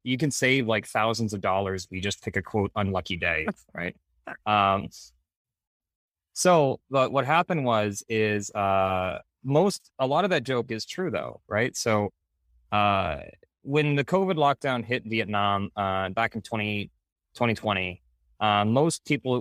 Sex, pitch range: male, 95-115 Hz